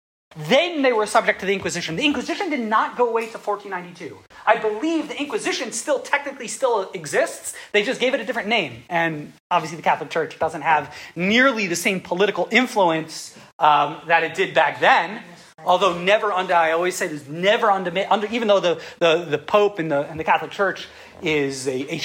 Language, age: English, 30-49